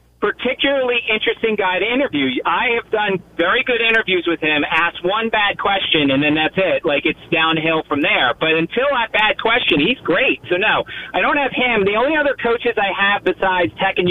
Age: 40-59